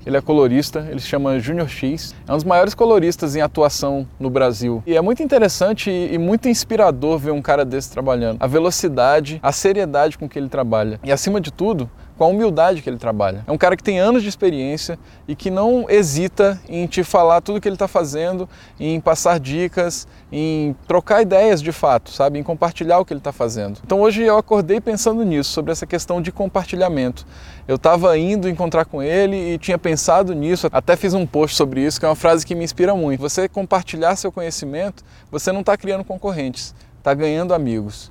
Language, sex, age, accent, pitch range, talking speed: Portuguese, male, 10-29, Brazilian, 140-190 Hz, 205 wpm